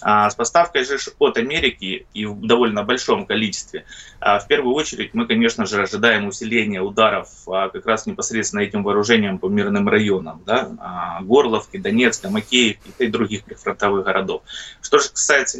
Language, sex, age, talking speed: Russian, male, 20-39, 145 wpm